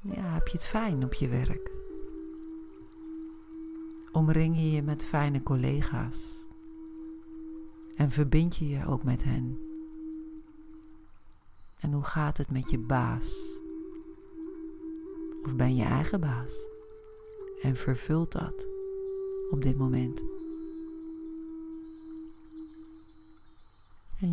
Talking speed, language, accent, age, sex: 100 wpm, Dutch, Dutch, 40-59, female